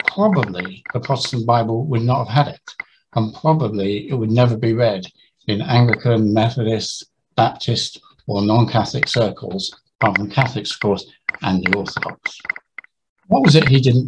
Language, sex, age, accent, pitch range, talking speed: English, male, 60-79, British, 105-140 Hz, 155 wpm